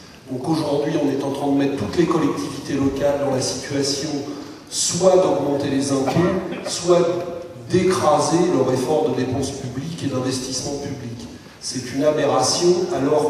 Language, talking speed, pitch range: French, 150 wpm, 130-155 Hz